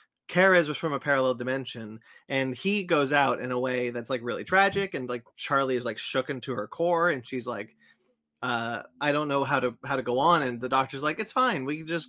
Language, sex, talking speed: English, male, 240 wpm